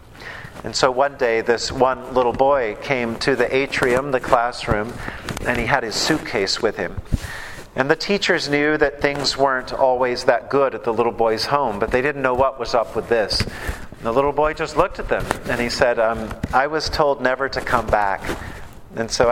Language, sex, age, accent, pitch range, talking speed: English, male, 50-69, American, 120-150 Hz, 205 wpm